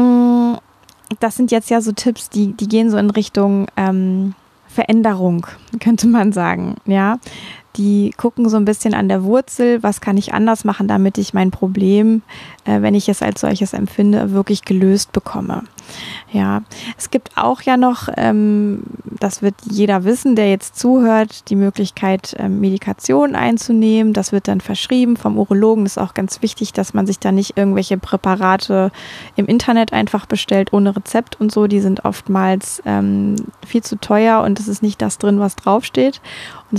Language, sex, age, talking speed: German, female, 20-39, 175 wpm